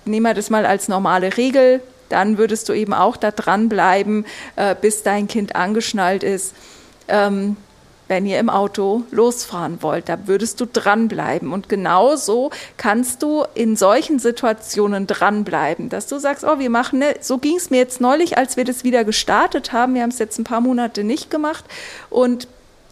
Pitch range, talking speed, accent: 220-265 Hz, 175 wpm, German